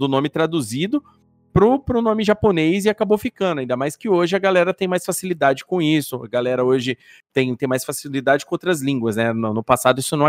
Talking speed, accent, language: 215 wpm, Brazilian, Portuguese